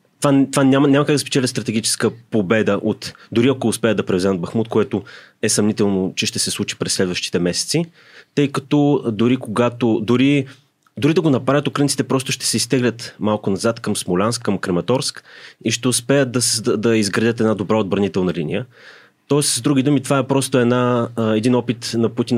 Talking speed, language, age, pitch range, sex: 180 wpm, Bulgarian, 30-49, 105-130 Hz, male